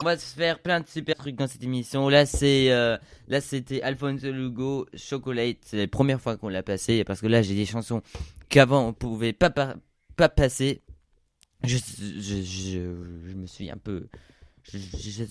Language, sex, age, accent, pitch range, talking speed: French, male, 20-39, French, 100-140 Hz, 190 wpm